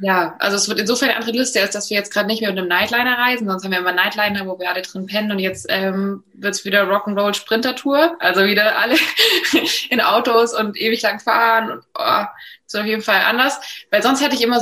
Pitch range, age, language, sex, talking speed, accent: 195-245 Hz, 20-39, German, female, 240 wpm, German